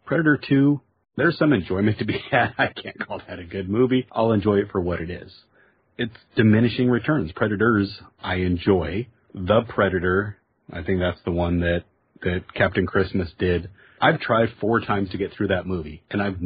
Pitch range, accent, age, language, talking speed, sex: 95-115 Hz, American, 40-59, English, 185 wpm, male